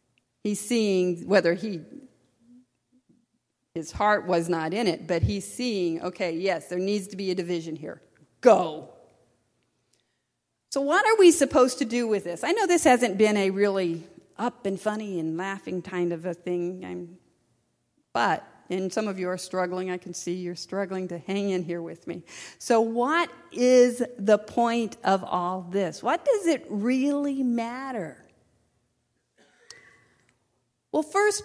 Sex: female